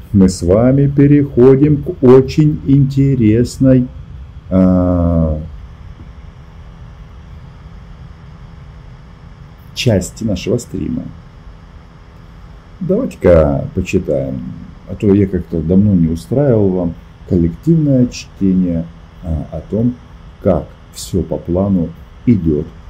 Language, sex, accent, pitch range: Russian, male, native, 80-125 Hz